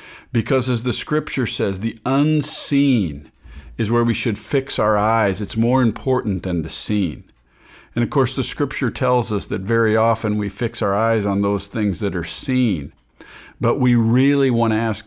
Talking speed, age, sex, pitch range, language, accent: 185 wpm, 50-69, male, 95-120 Hz, English, American